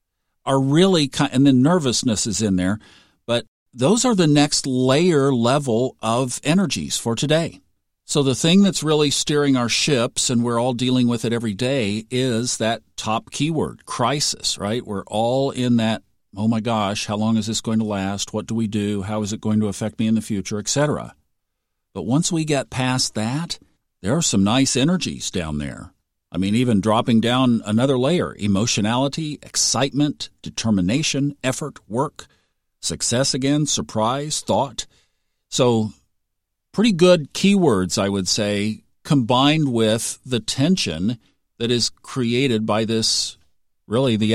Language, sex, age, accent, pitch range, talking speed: English, male, 50-69, American, 105-135 Hz, 160 wpm